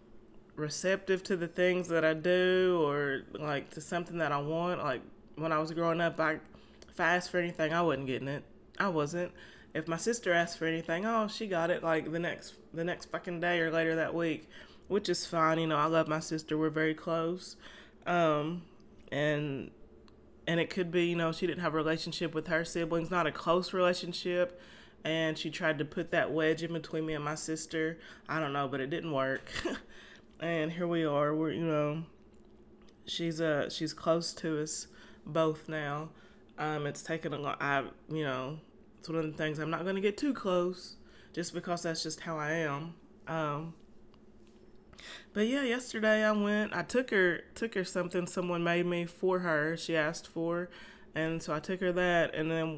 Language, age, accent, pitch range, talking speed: English, 20-39, American, 155-180 Hz, 200 wpm